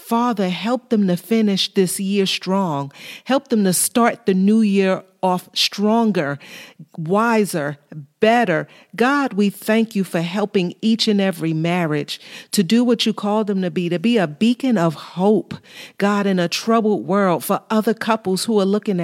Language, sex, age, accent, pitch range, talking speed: English, female, 40-59, American, 180-220 Hz, 170 wpm